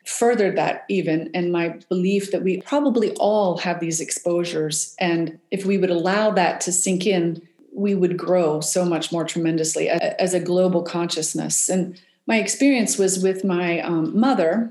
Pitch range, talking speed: 180-210 Hz, 165 wpm